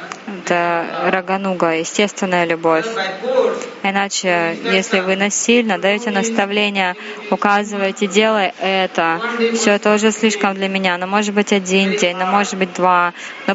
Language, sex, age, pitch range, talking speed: Russian, female, 20-39, 185-220 Hz, 135 wpm